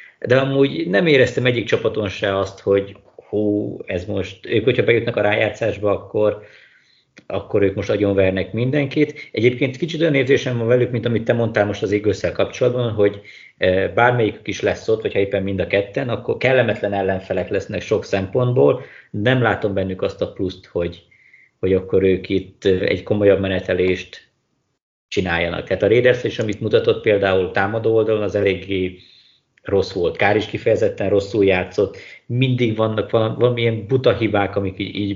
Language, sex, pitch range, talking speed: Hungarian, male, 100-120 Hz, 160 wpm